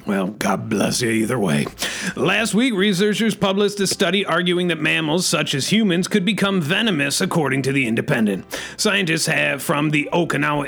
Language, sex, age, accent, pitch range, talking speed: English, male, 30-49, American, 140-175 Hz, 170 wpm